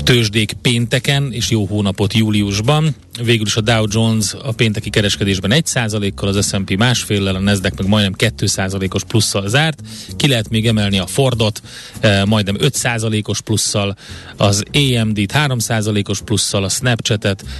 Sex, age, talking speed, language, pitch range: male, 30-49, 140 wpm, Hungarian, 100-120 Hz